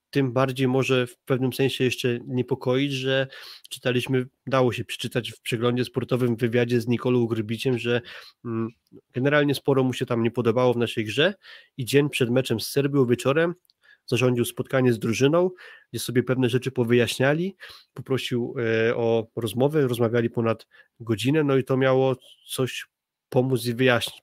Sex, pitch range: male, 120-135 Hz